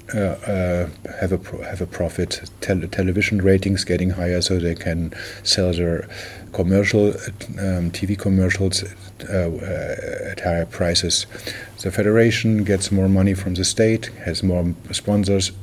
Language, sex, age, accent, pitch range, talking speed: English, male, 50-69, German, 90-105 Hz, 145 wpm